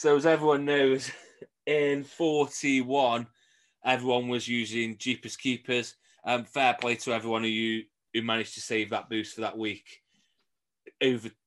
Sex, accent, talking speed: male, British, 145 wpm